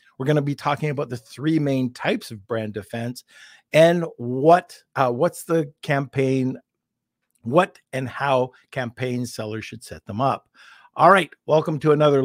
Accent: American